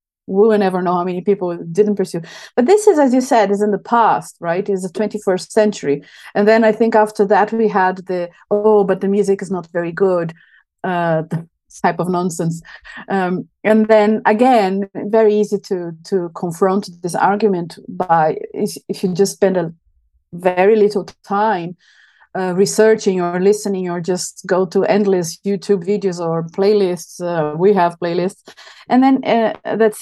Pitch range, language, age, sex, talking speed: 180-210 Hz, English, 30-49, female, 170 wpm